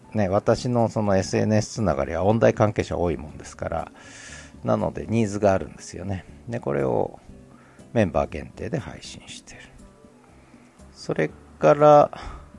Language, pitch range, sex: Japanese, 80-110 Hz, male